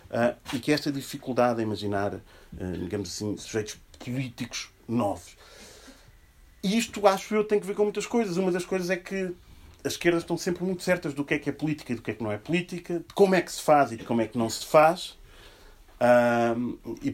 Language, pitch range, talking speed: Portuguese, 120-155 Hz, 225 wpm